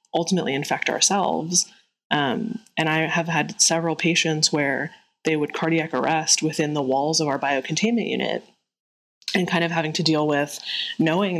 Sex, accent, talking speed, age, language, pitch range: female, American, 160 wpm, 20-39, English, 150-170 Hz